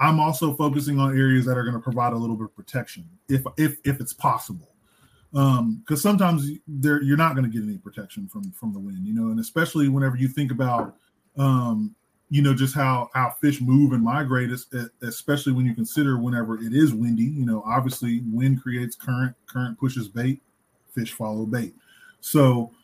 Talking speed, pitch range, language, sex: 195 wpm, 125-145 Hz, English, male